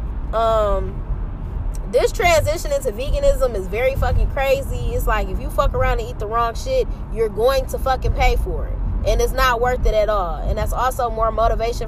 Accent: American